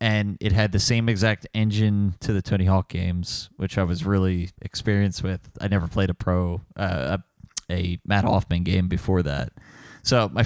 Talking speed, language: 190 wpm, English